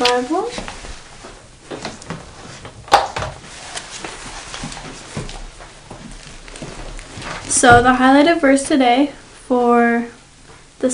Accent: American